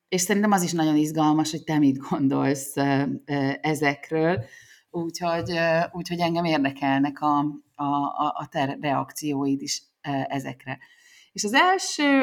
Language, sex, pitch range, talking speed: Hungarian, female, 155-215 Hz, 120 wpm